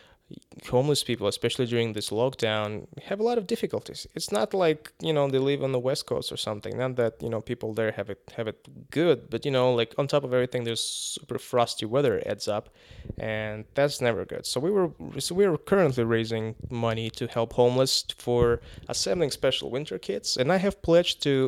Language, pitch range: English, 120-165 Hz